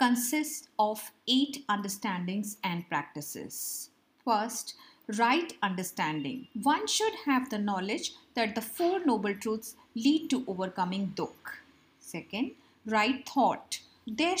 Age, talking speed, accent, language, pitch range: 50-69, 110 wpm, Indian, English, 205-295 Hz